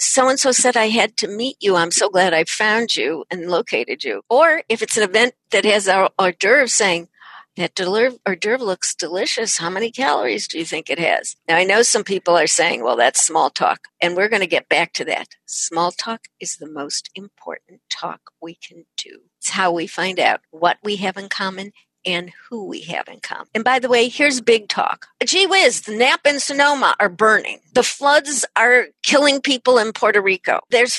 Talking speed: 215 wpm